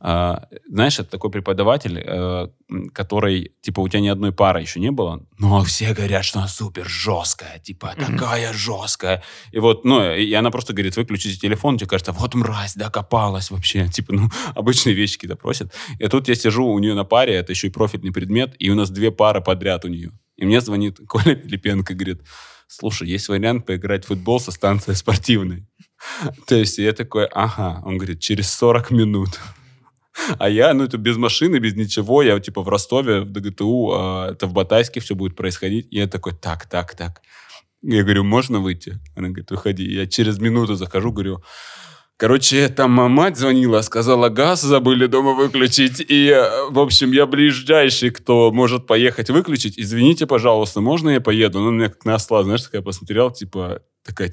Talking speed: 180 wpm